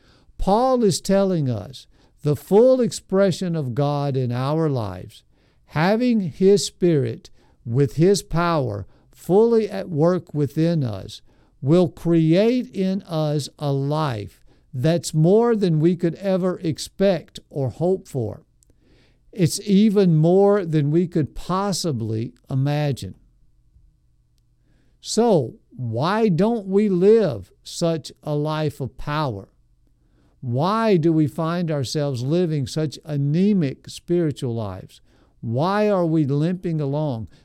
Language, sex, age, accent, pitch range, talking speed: English, male, 60-79, American, 140-190 Hz, 115 wpm